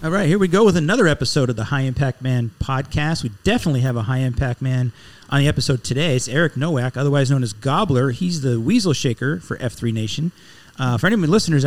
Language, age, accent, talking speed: English, 40-59, American, 230 wpm